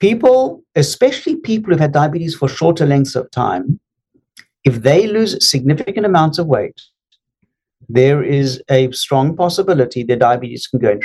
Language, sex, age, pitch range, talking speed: Spanish, male, 50-69, 130-170 Hz, 150 wpm